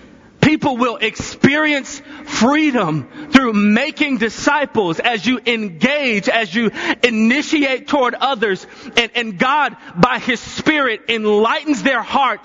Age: 30-49